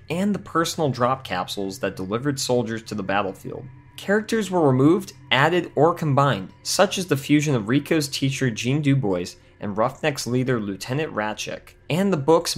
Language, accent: English, American